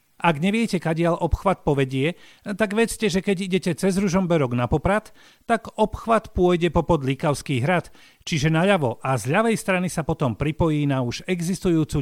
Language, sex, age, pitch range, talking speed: Slovak, male, 40-59, 130-185 Hz, 160 wpm